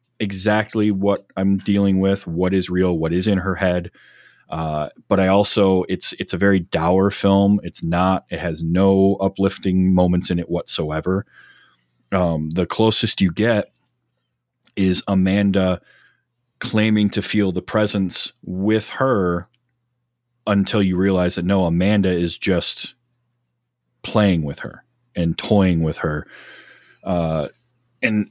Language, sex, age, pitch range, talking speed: English, male, 30-49, 85-105 Hz, 135 wpm